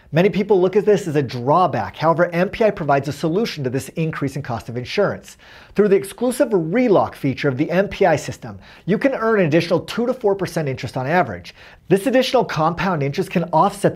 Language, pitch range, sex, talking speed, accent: English, 140-195 Hz, male, 200 wpm, American